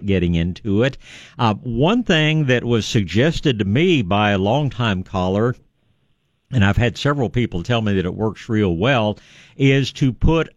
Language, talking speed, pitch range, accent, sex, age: English, 170 wpm, 95-135 Hz, American, male, 60-79